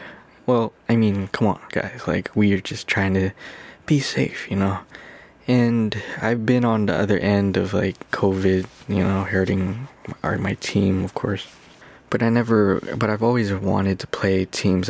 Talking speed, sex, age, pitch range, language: 175 wpm, male, 20-39, 95-110 Hz, English